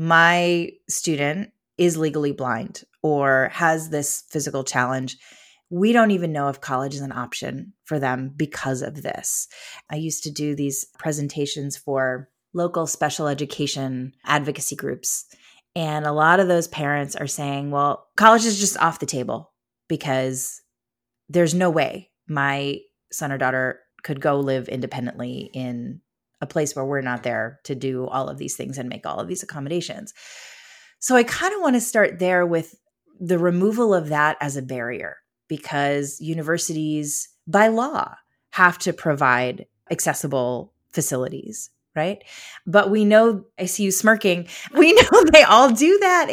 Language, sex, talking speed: English, female, 155 wpm